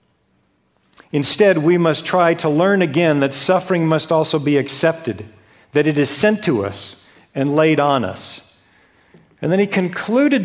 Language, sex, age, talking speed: English, male, 50-69, 155 wpm